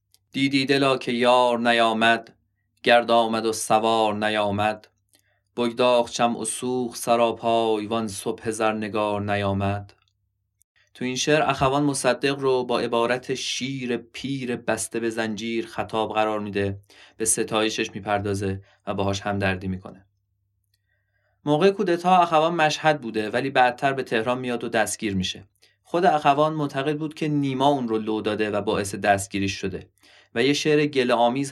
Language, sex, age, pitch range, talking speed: Persian, male, 20-39, 105-135 Hz, 145 wpm